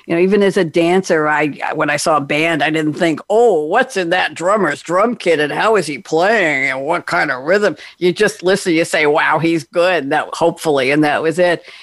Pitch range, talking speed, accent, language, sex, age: 165-200 Hz, 240 wpm, American, English, female, 60-79